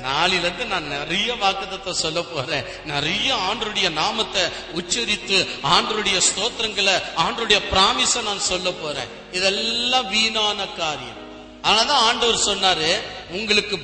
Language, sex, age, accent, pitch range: Tamil, male, 30-49, native, 180-250 Hz